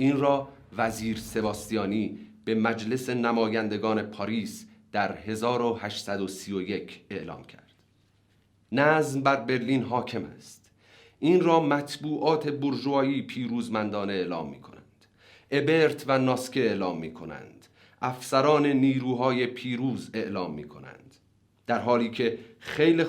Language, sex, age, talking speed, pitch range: Persian, male, 40-59, 105 wpm, 105-135 Hz